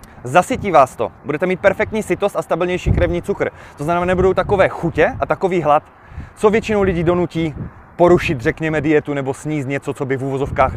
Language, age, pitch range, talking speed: Czech, 20-39, 145-190 Hz, 185 wpm